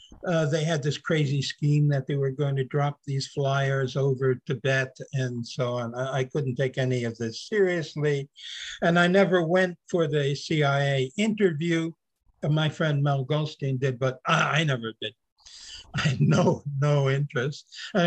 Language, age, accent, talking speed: English, 60-79, American, 170 wpm